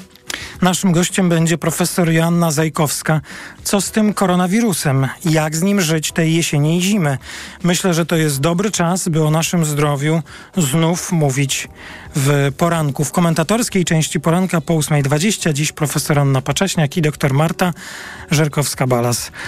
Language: Polish